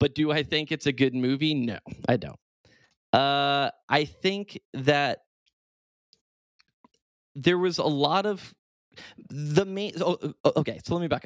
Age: 20-39